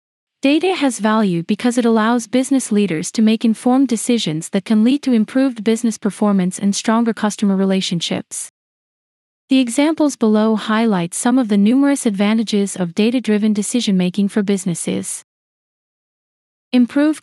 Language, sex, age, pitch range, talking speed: English, female, 30-49, 200-245 Hz, 130 wpm